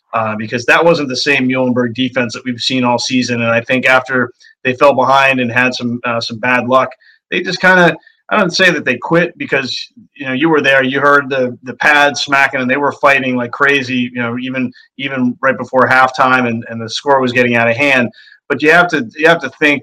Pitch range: 120-140 Hz